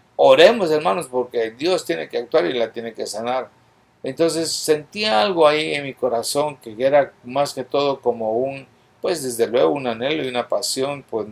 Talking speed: 185 wpm